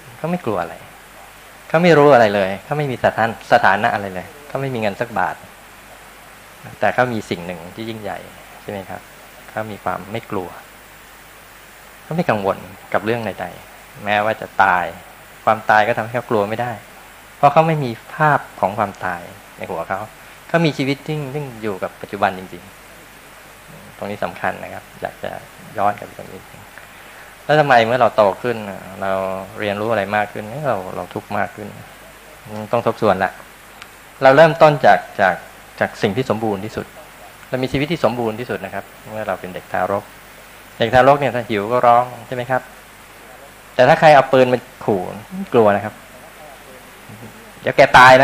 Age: 20-39